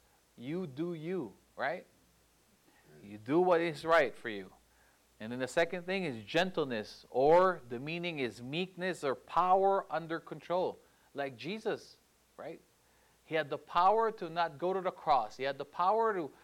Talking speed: 165 wpm